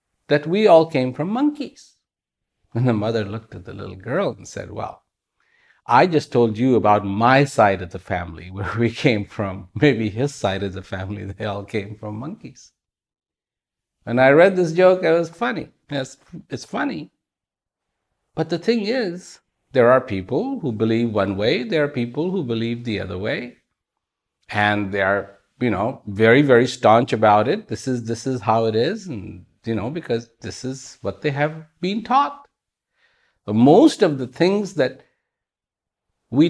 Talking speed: 180 wpm